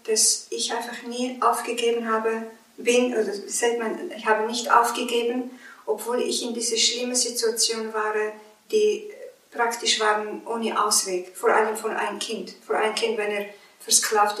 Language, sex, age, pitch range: German, female, 50-69, 205-235 Hz